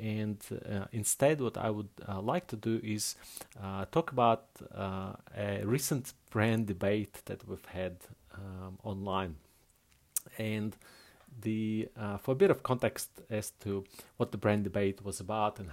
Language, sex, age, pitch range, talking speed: English, male, 30-49, 100-120 Hz, 155 wpm